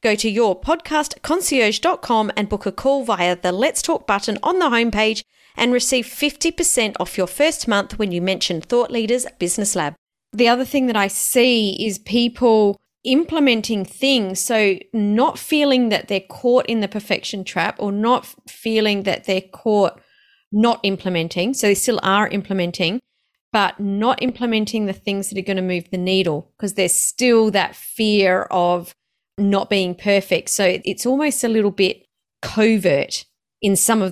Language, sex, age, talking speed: English, female, 30-49, 165 wpm